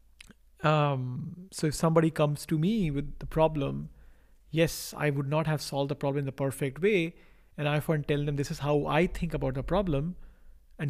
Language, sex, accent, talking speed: English, male, Indian, 200 wpm